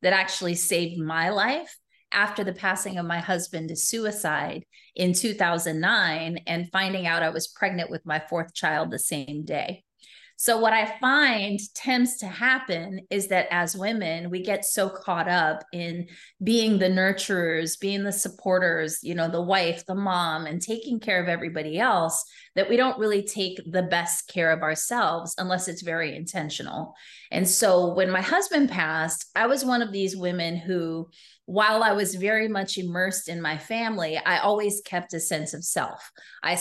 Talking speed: 175 wpm